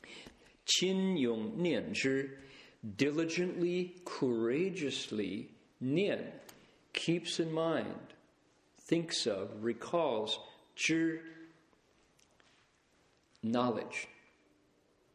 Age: 50-69